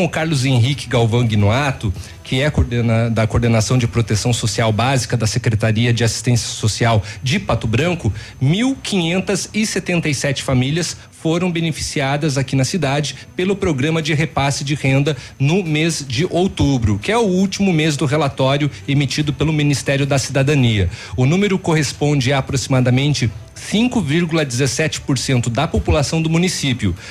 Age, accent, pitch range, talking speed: 40-59, Brazilian, 125-175 Hz, 135 wpm